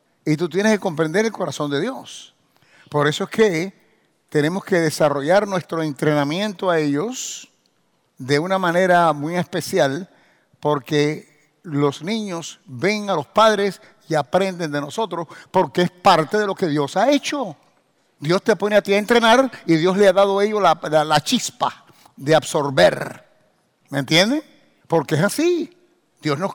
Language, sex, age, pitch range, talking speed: English, male, 60-79, 155-210 Hz, 165 wpm